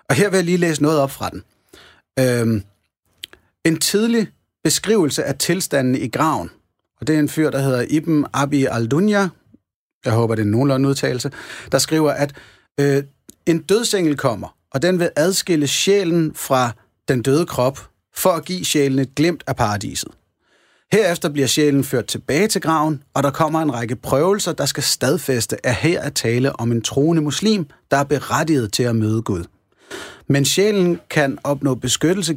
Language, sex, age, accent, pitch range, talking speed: Danish, male, 30-49, native, 125-160 Hz, 170 wpm